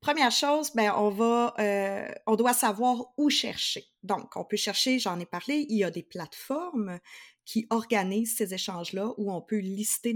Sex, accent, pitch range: female, Canadian, 190-240 Hz